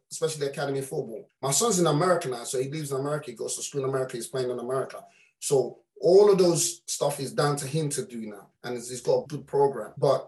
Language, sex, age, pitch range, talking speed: English, male, 30-49, 140-185 Hz, 250 wpm